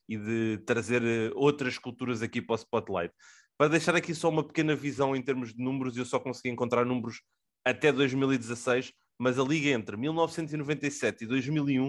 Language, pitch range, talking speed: English, 120-145 Hz, 160 wpm